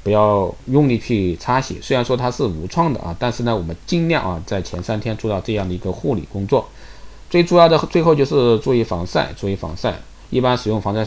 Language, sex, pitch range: Chinese, male, 90-120 Hz